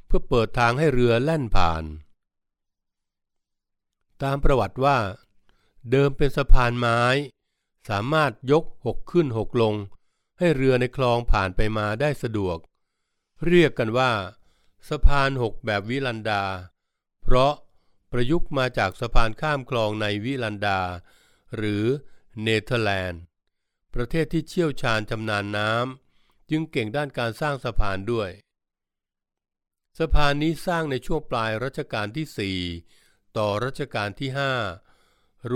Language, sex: Thai, male